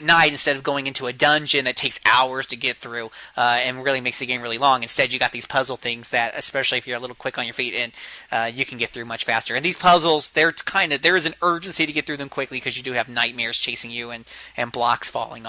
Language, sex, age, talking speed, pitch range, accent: English, male, 30-49, 275 wpm, 120-145 Hz, American